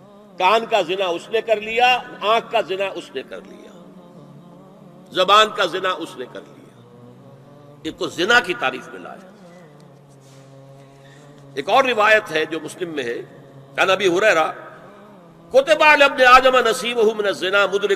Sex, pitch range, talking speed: male, 135-215 Hz, 155 wpm